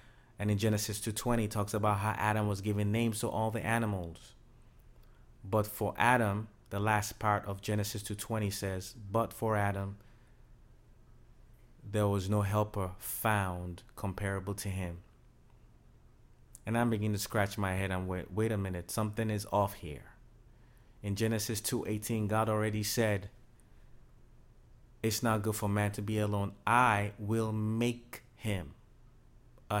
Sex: male